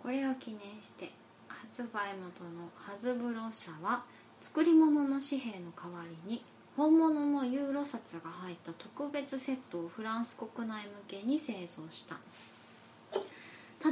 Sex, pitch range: female, 195-285 Hz